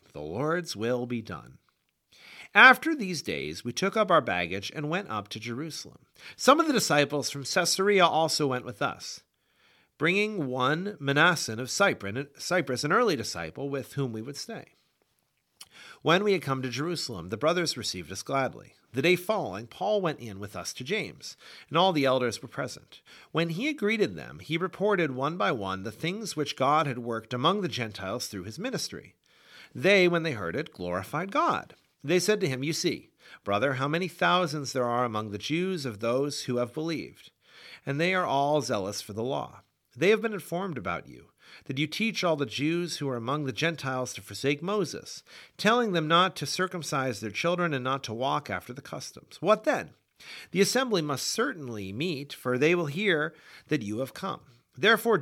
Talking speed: 190 wpm